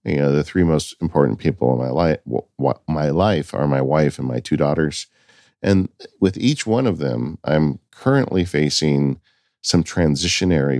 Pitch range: 75-95 Hz